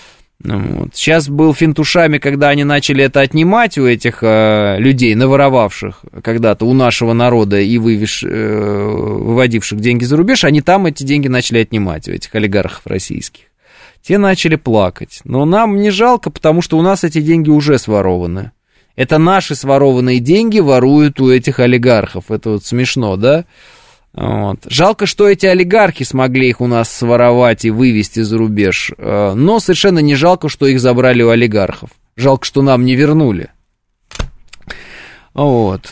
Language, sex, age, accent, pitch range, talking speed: Russian, male, 20-39, native, 115-155 Hz, 145 wpm